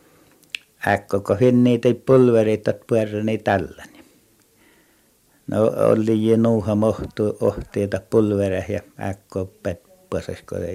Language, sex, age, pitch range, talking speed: Finnish, male, 60-79, 95-110 Hz, 85 wpm